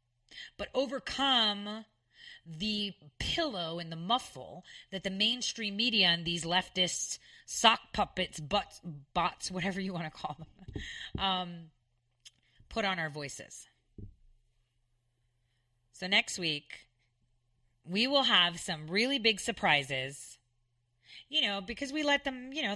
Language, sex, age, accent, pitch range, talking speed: English, female, 30-49, American, 155-225 Hz, 125 wpm